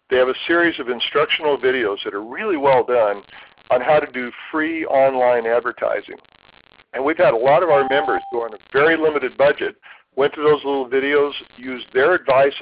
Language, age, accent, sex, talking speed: English, 50-69, American, male, 200 wpm